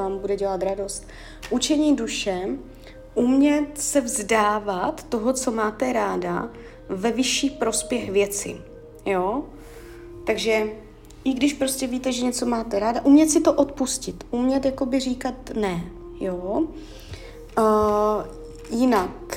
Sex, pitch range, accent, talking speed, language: female, 205-255 Hz, native, 110 wpm, Czech